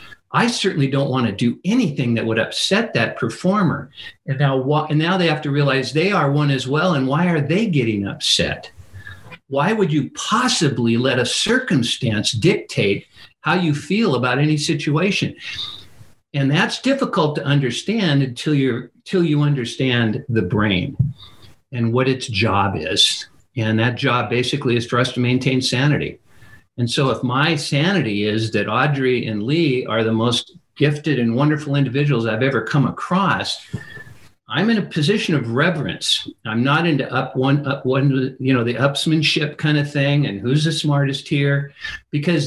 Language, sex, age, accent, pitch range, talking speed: English, male, 50-69, American, 120-160 Hz, 165 wpm